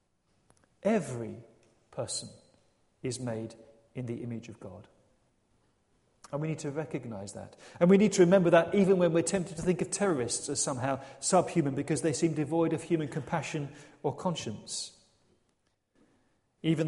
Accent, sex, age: British, male, 40-59